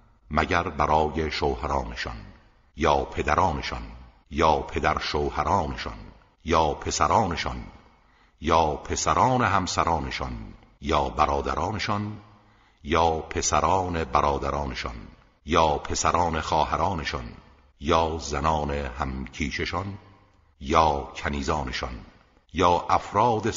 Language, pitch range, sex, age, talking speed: Persian, 70-90 Hz, male, 60-79, 70 wpm